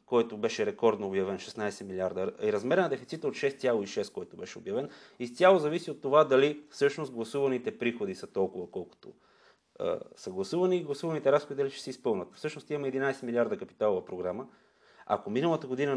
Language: Bulgarian